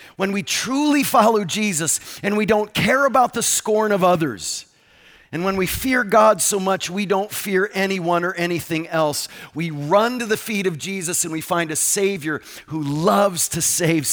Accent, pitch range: American, 150-220 Hz